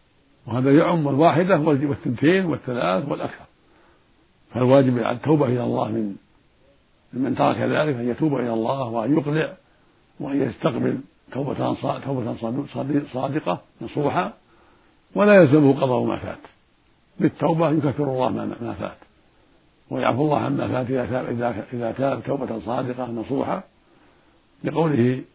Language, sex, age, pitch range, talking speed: Arabic, male, 60-79, 125-150 Hz, 115 wpm